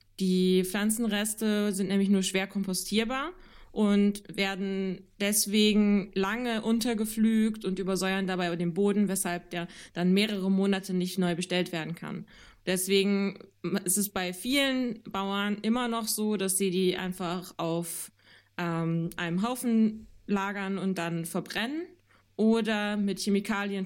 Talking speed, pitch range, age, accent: 130 wpm, 180-210 Hz, 20-39, German